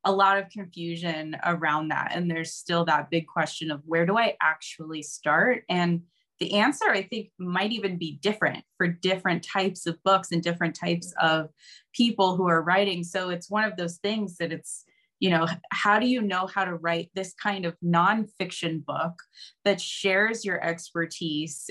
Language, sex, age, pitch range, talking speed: English, female, 20-39, 170-200 Hz, 180 wpm